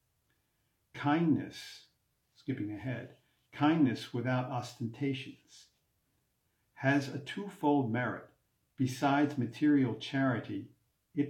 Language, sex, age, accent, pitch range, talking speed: English, male, 50-69, American, 110-135 Hz, 75 wpm